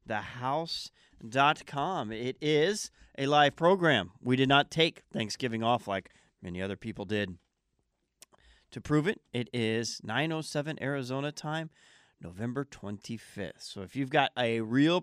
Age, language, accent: 40-59, English, American